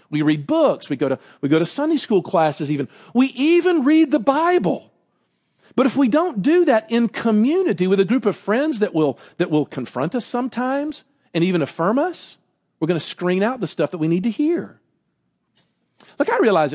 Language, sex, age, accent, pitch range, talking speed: English, male, 50-69, American, 155-250 Hz, 205 wpm